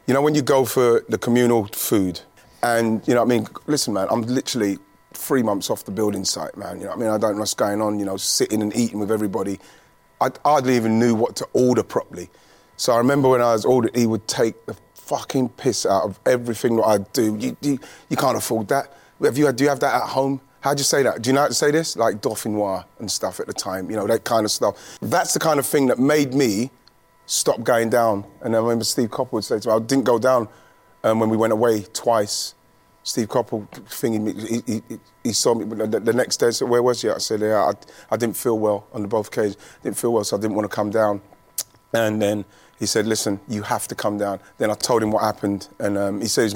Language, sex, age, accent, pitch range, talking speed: English, male, 30-49, British, 105-125 Hz, 260 wpm